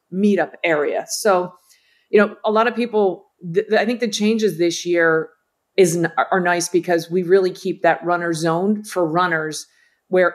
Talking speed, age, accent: 180 wpm, 40-59, American